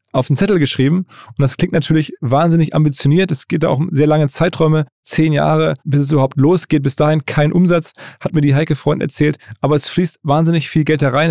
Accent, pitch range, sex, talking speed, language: German, 140-165 Hz, male, 210 wpm, German